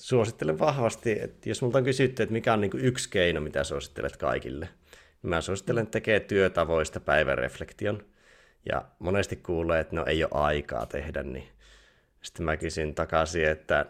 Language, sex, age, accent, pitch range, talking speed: Finnish, male, 30-49, native, 80-105 Hz, 165 wpm